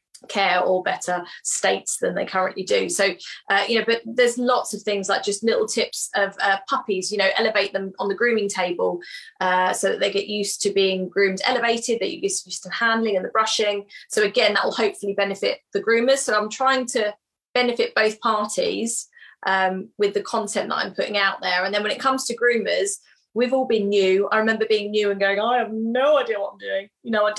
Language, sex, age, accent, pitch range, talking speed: English, female, 20-39, British, 195-230 Hz, 225 wpm